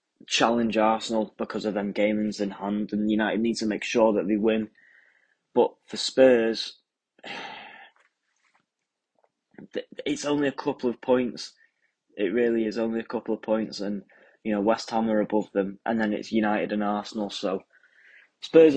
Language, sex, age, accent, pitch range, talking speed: English, male, 10-29, British, 100-115 Hz, 160 wpm